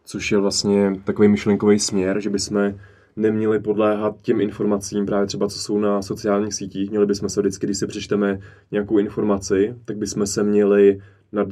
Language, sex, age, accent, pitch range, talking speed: Czech, male, 20-39, native, 100-110 Hz, 170 wpm